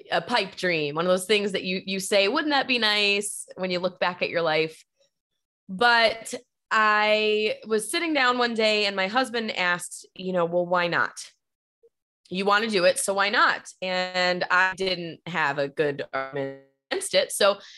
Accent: American